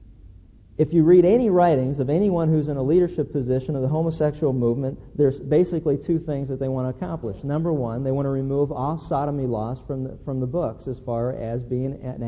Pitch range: 130-160 Hz